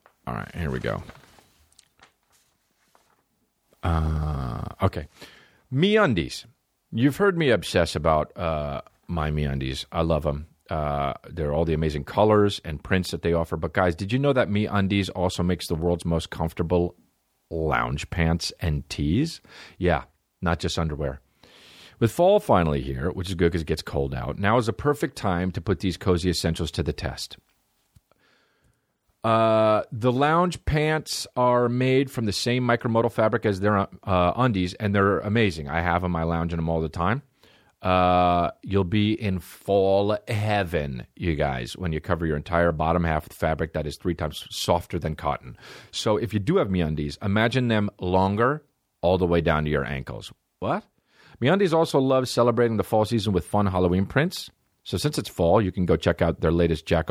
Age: 40-59